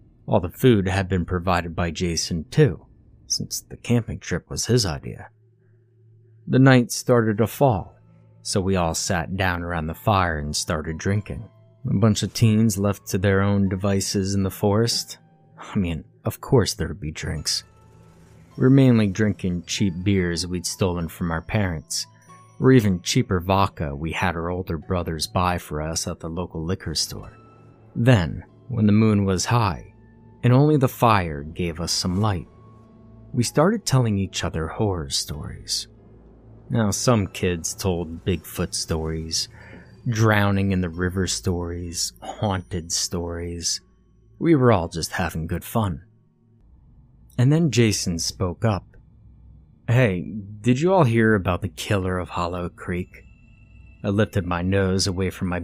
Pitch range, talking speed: 90-115 Hz, 155 wpm